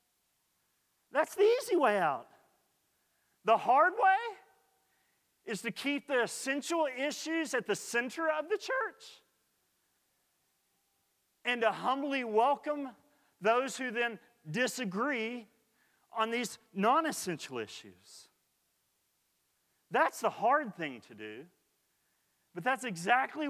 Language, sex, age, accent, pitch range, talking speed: English, male, 40-59, American, 155-245 Hz, 105 wpm